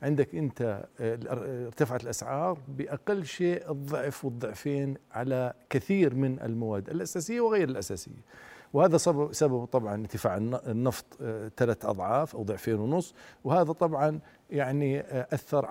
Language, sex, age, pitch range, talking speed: Arabic, male, 50-69, 125-160 Hz, 110 wpm